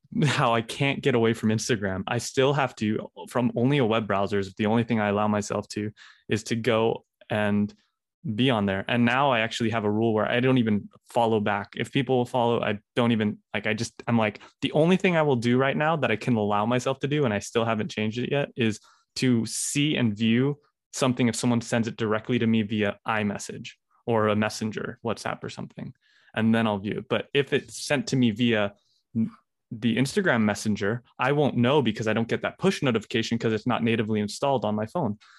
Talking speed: 225 wpm